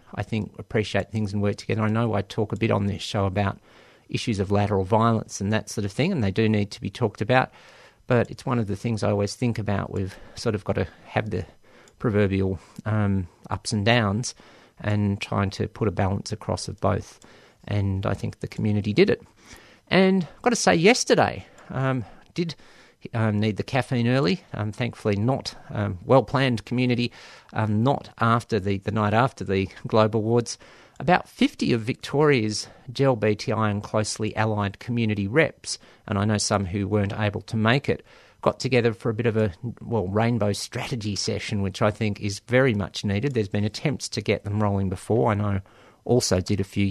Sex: male